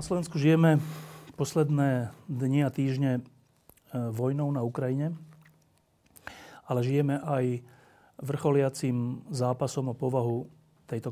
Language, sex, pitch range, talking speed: Slovak, male, 120-145 Hz, 95 wpm